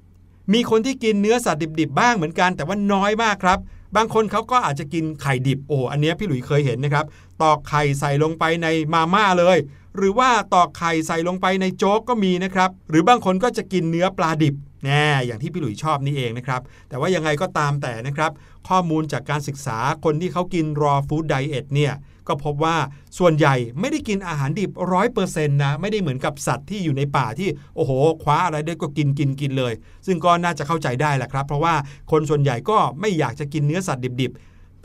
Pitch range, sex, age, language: 145-185 Hz, male, 60-79, Thai